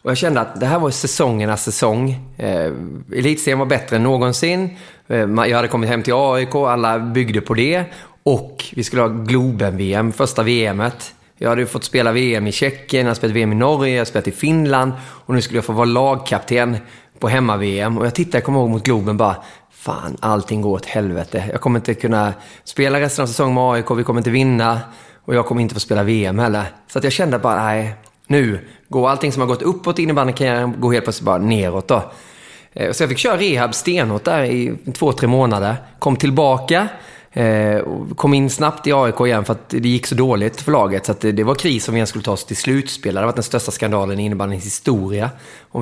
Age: 20-39